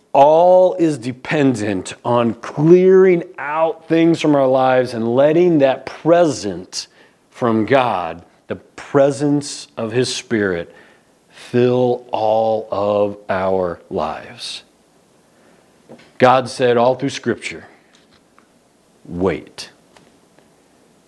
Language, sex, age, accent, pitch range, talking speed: English, male, 50-69, American, 110-145 Hz, 90 wpm